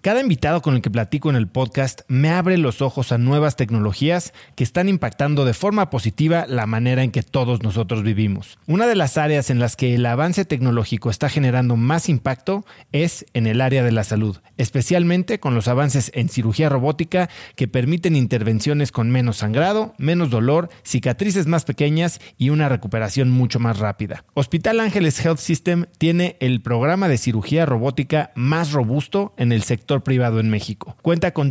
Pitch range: 120-155 Hz